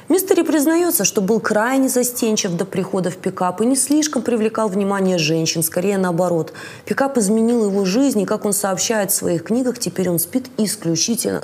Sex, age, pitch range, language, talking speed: female, 20-39, 175-240 Hz, Russian, 175 wpm